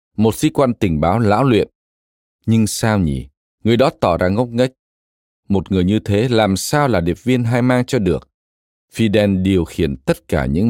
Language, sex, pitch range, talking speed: Vietnamese, male, 75-115 Hz, 195 wpm